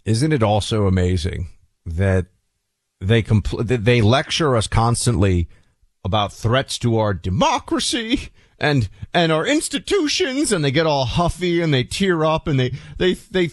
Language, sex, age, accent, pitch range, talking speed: English, male, 40-59, American, 120-175 Hz, 150 wpm